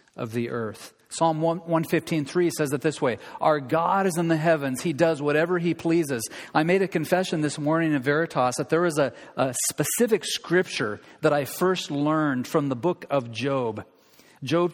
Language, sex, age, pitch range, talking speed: English, male, 40-59, 130-170 Hz, 190 wpm